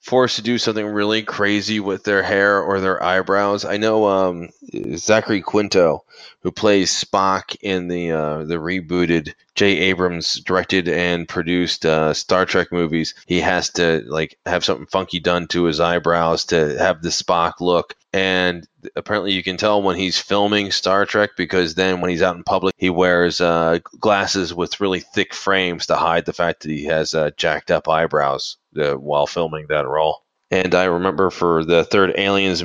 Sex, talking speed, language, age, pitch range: male, 180 wpm, English, 30-49, 85-100 Hz